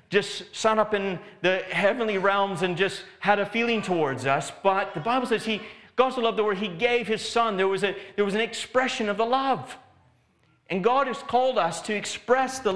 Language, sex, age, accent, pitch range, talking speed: English, male, 40-59, American, 165-215 Hz, 215 wpm